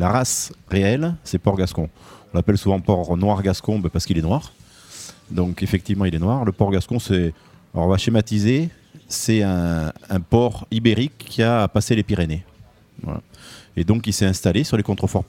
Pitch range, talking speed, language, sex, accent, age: 90-110 Hz, 160 wpm, French, male, French, 30-49